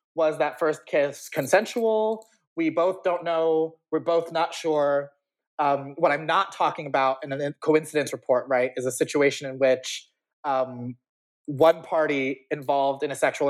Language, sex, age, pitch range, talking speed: English, male, 30-49, 135-165 Hz, 160 wpm